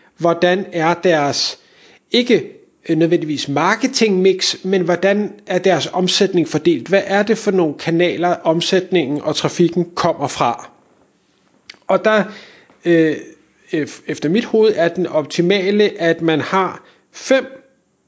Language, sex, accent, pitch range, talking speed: Danish, male, native, 165-210 Hz, 115 wpm